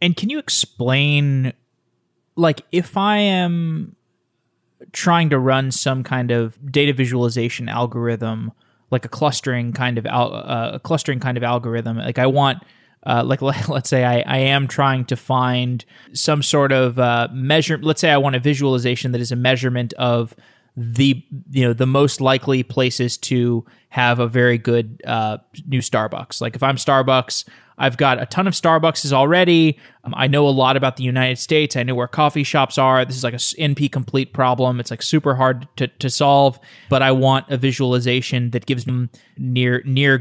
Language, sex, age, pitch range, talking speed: English, male, 20-39, 120-140 Hz, 180 wpm